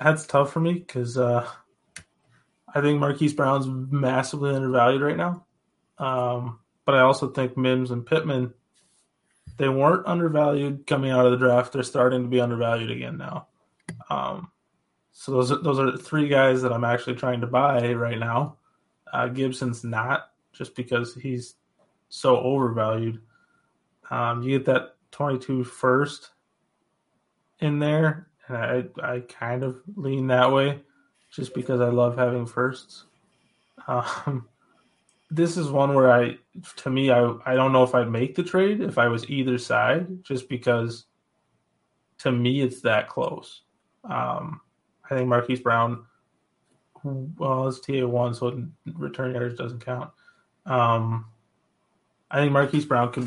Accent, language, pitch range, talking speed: American, English, 120-140 Hz, 150 wpm